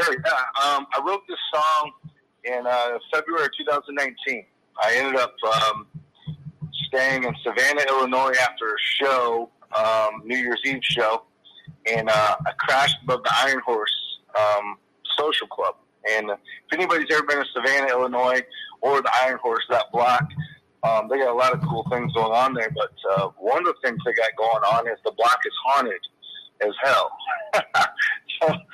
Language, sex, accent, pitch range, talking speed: English, male, American, 115-150 Hz, 165 wpm